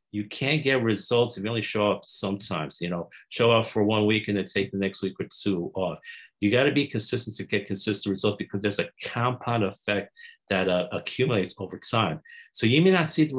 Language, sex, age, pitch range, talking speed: English, male, 50-69, 100-120 Hz, 230 wpm